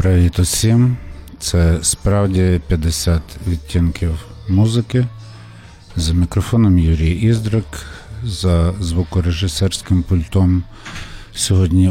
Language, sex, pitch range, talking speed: Ukrainian, male, 85-105 Hz, 75 wpm